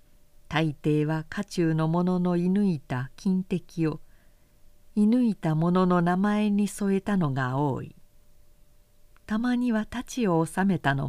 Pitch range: 160-210 Hz